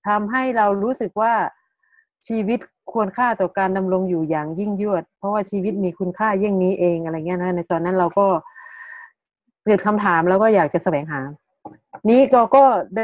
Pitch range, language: 185-230 Hz, Thai